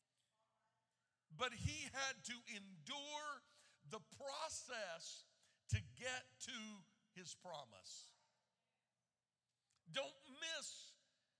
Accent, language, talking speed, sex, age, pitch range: American, English, 75 wpm, male, 50-69, 210-270 Hz